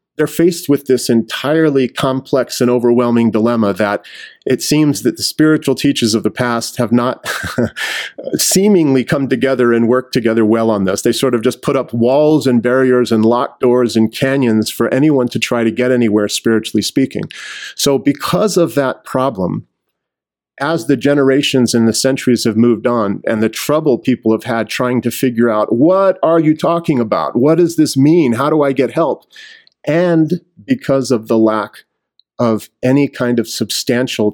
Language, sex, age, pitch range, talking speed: English, male, 40-59, 120-145 Hz, 175 wpm